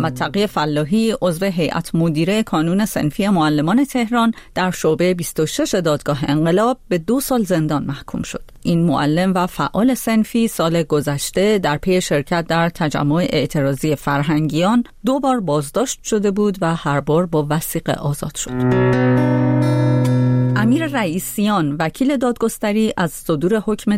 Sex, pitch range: female, 150-220 Hz